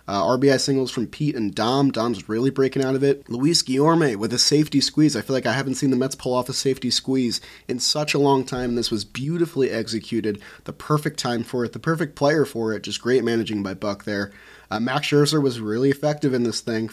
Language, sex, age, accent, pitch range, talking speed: English, male, 30-49, American, 110-140 Hz, 235 wpm